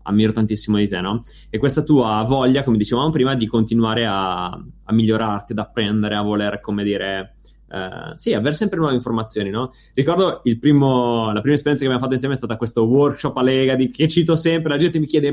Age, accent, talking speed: 20-39, native, 210 wpm